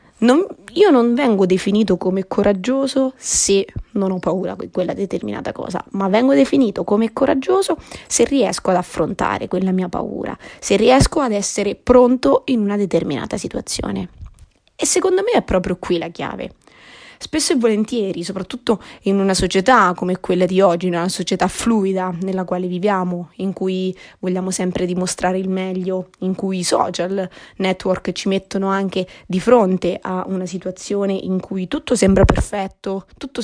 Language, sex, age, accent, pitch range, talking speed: Italian, female, 20-39, native, 185-215 Hz, 155 wpm